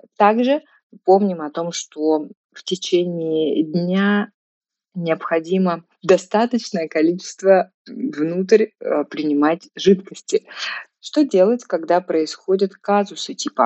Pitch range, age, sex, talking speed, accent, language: 160-210 Hz, 20-39, female, 90 wpm, native, Russian